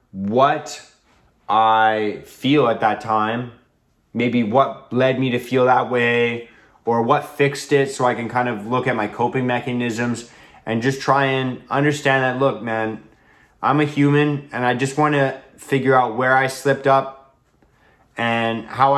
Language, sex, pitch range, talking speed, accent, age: English, male, 115-135 Hz, 165 wpm, American, 20-39